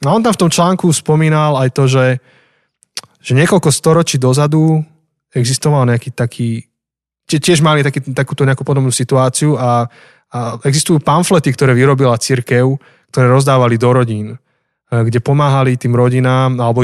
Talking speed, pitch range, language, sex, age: 145 wpm, 120-145 Hz, Slovak, male, 20-39